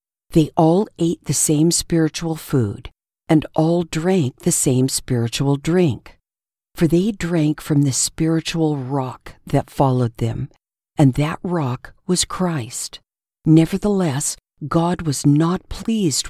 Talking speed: 125 wpm